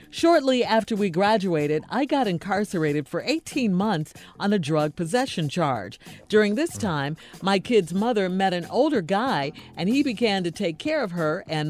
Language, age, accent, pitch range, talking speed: English, 50-69, American, 175-235 Hz, 175 wpm